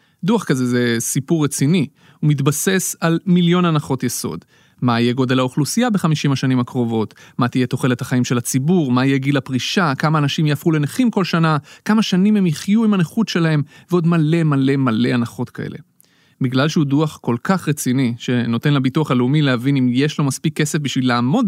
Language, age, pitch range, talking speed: Hebrew, 30-49, 130-175 Hz, 180 wpm